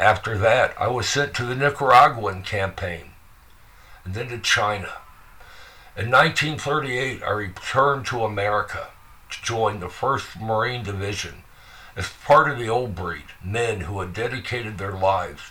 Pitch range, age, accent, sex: 95-125 Hz, 60-79, American, male